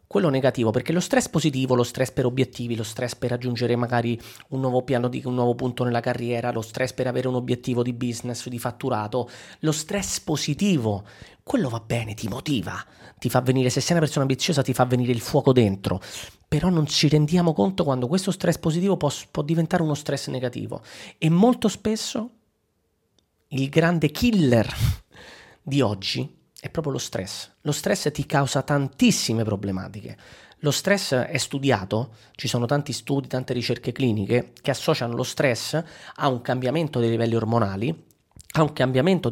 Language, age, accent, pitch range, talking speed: Italian, 30-49, native, 120-155 Hz, 170 wpm